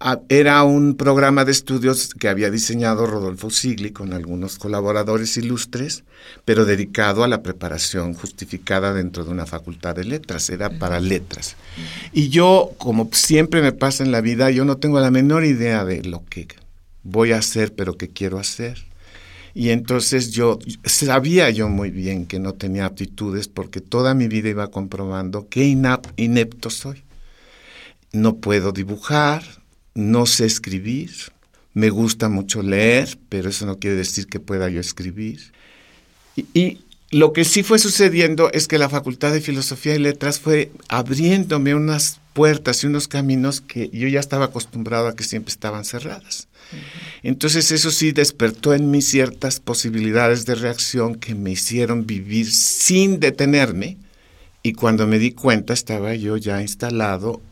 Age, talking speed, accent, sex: 60-79, 155 wpm, Mexican, male